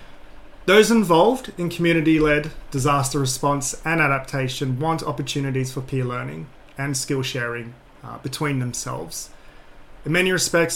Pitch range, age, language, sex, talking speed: 130-155 Hz, 30-49, English, male, 110 wpm